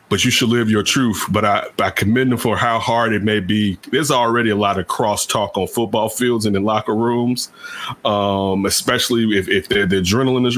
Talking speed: 205 wpm